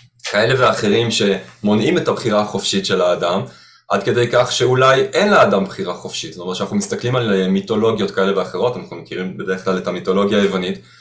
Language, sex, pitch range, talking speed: Hebrew, male, 100-130 Hz, 170 wpm